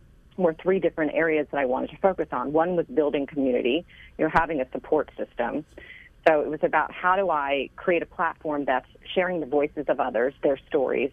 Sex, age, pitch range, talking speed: female, 40-59, 130-165 Hz, 200 wpm